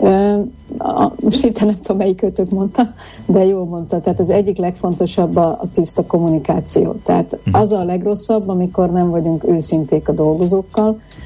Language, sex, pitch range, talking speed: Hungarian, female, 165-200 Hz, 155 wpm